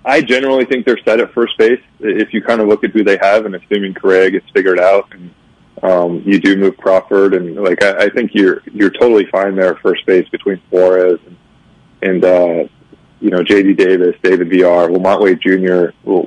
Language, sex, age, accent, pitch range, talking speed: English, male, 20-39, American, 90-105 Hz, 215 wpm